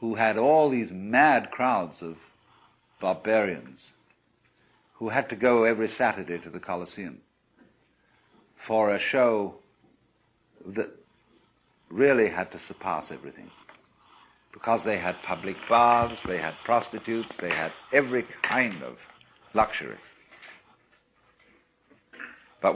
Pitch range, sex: 100-130 Hz, male